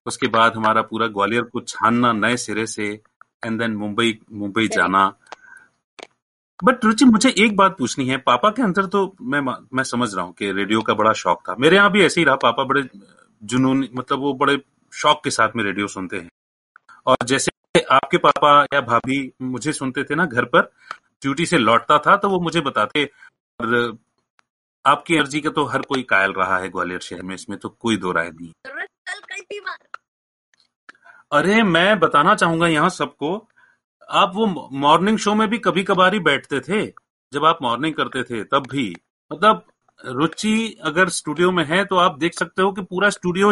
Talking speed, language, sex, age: 180 wpm, Hindi, male, 30-49